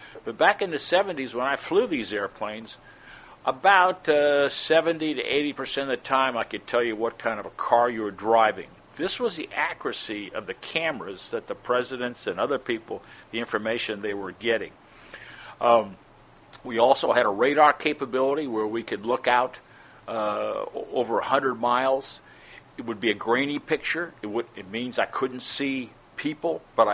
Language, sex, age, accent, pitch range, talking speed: English, male, 50-69, American, 115-140 Hz, 175 wpm